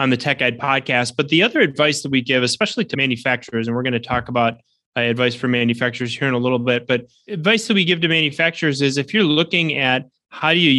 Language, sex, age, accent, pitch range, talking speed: English, male, 20-39, American, 120-140 Hz, 240 wpm